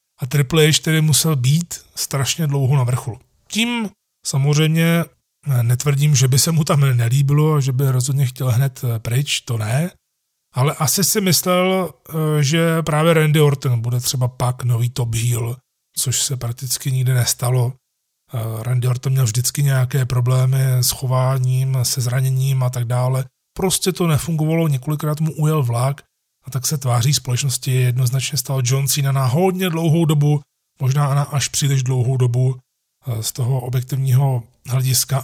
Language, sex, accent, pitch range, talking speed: Czech, male, native, 130-155 Hz, 150 wpm